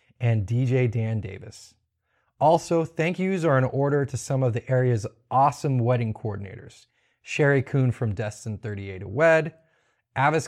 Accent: American